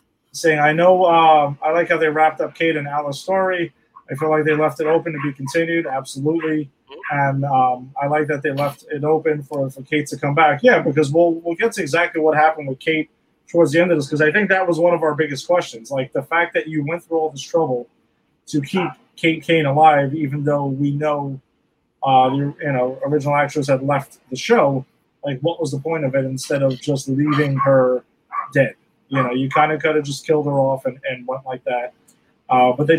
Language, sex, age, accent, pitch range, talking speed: English, male, 30-49, American, 140-165 Hz, 230 wpm